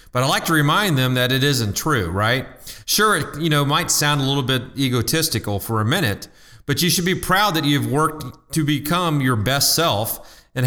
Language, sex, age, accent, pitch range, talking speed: English, male, 40-59, American, 120-155 Hz, 215 wpm